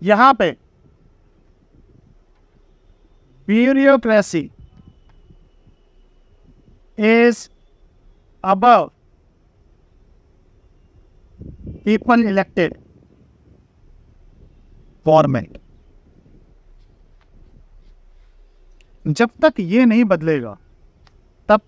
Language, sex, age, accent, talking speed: Hindi, male, 50-69, native, 40 wpm